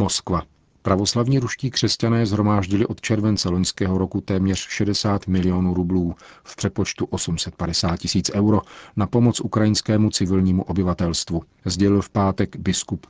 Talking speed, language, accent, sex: 125 wpm, Czech, native, male